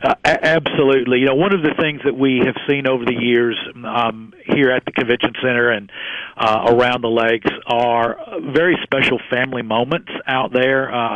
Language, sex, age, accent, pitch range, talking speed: English, male, 50-69, American, 120-140 Hz, 185 wpm